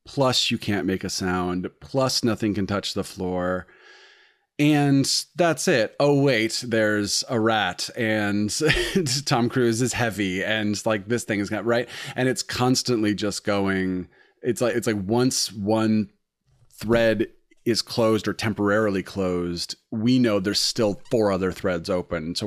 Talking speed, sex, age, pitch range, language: 155 wpm, male, 30-49, 95-115 Hz, English